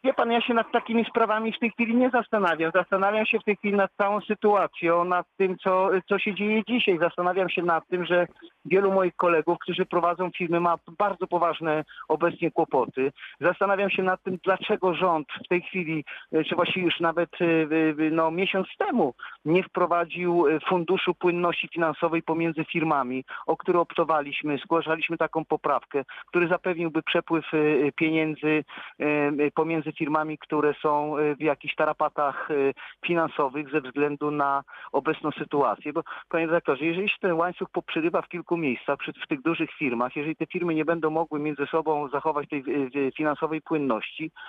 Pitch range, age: 155-190 Hz, 40-59